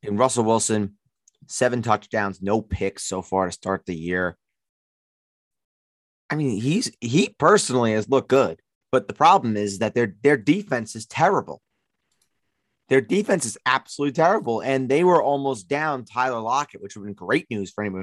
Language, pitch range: English, 110-140 Hz